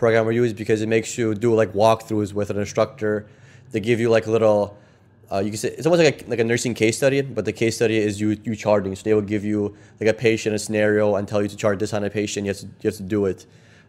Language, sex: English, male